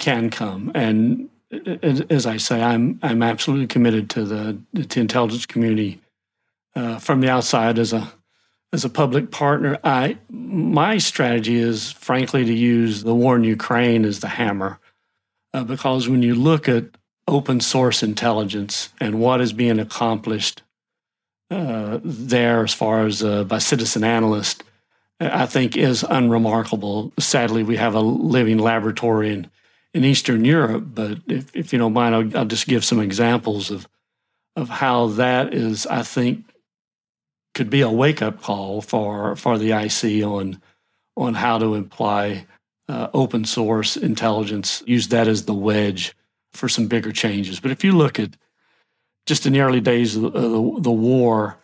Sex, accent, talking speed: male, American, 160 wpm